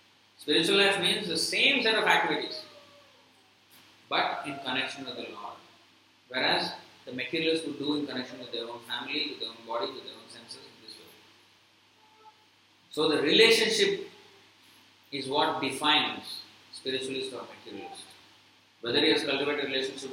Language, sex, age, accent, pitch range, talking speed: English, male, 30-49, Indian, 130-190 Hz, 150 wpm